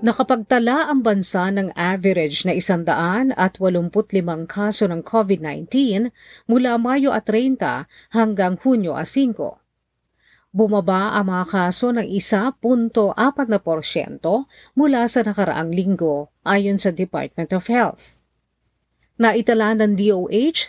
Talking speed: 110 wpm